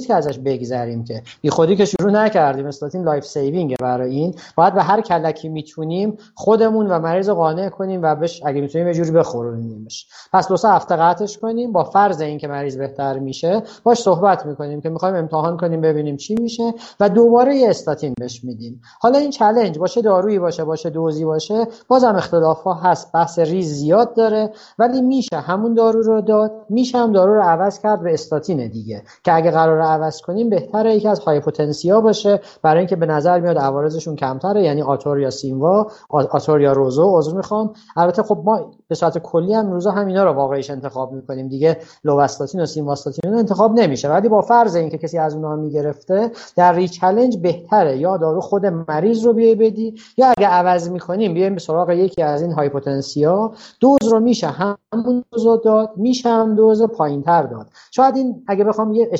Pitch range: 150-215 Hz